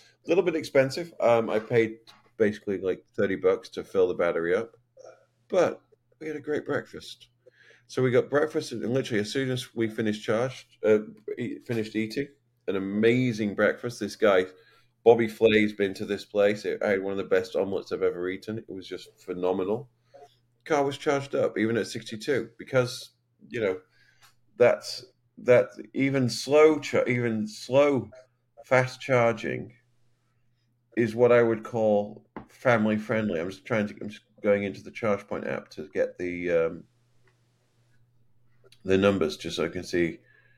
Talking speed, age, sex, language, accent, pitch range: 160 wpm, 30-49, male, English, British, 105-125 Hz